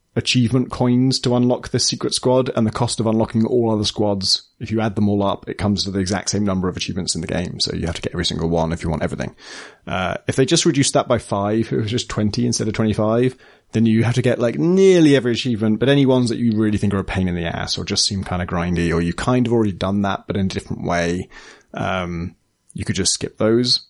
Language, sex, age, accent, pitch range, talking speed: English, male, 30-49, British, 100-125 Hz, 270 wpm